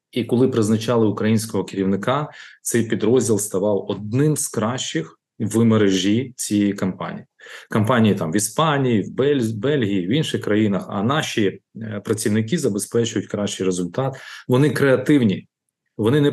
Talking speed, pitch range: 125 wpm, 105-135 Hz